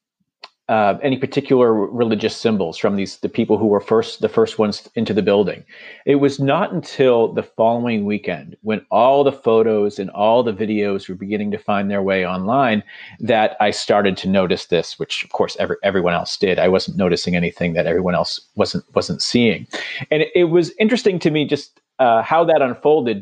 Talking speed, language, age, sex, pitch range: 190 wpm, English, 40-59, male, 105-130 Hz